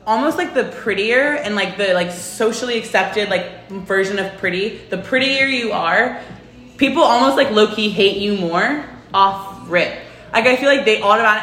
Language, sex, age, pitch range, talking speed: English, female, 20-39, 205-290 Hz, 170 wpm